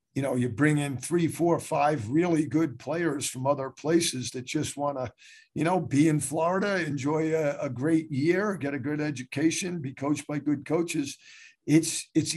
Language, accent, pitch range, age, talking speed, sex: English, American, 135-160 Hz, 50-69, 190 wpm, male